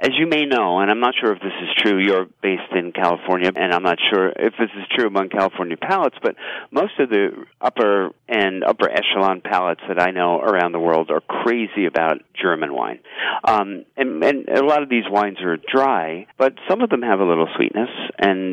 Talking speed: 215 wpm